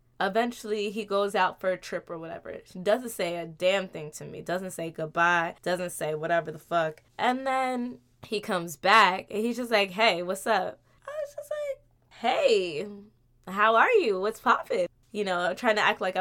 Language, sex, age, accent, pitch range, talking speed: English, female, 20-39, American, 175-235 Hz, 195 wpm